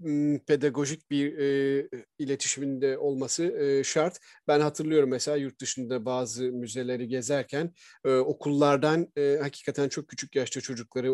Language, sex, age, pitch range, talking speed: Turkish, male, 40-59, 135-170 Hz, 125 wpm